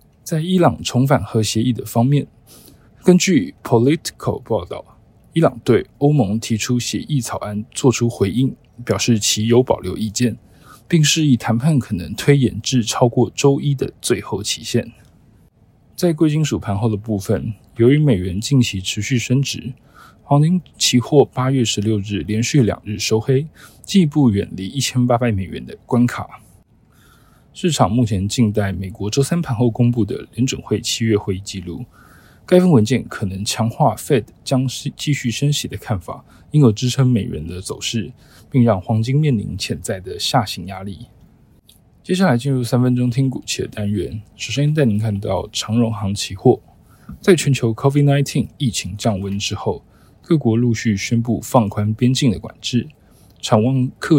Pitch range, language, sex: 105-135 Hz, Chinese, male